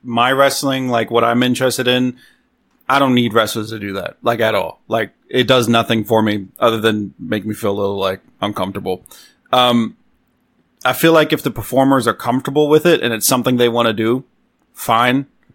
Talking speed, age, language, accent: 195 wpm, 30-49, English, American